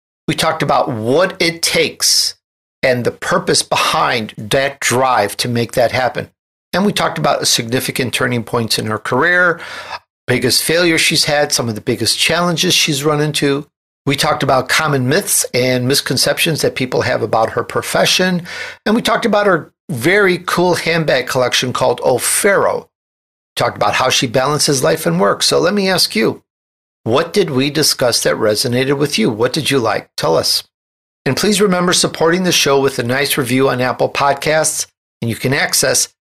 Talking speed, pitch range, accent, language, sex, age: 175 wpm, 130-180 Hz, American, English, male, 60-79